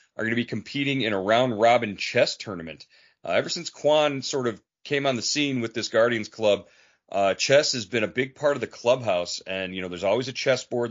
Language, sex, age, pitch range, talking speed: English, male, 40-59, 105-120 Hz, 230 wpm